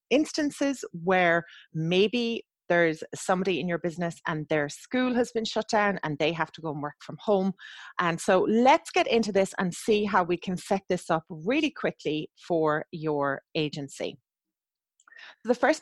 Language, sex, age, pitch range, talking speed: English, female, 30-49, 155-205 Hz, 170 wpm